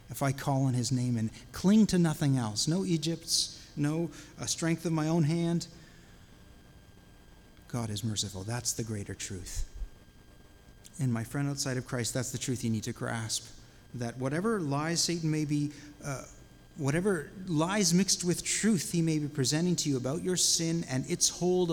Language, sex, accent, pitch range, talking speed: English, male, American, 115-155 Hz, 175 wpm